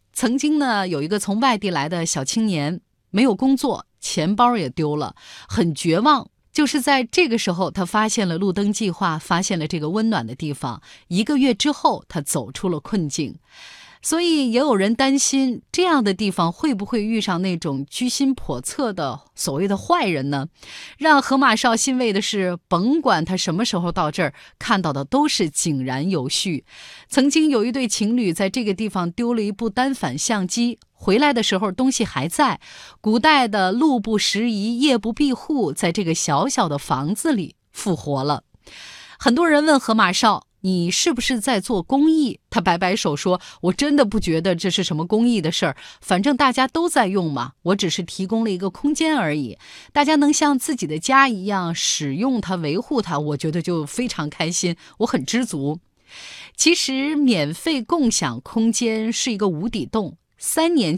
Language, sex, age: Chinese, female, 20-39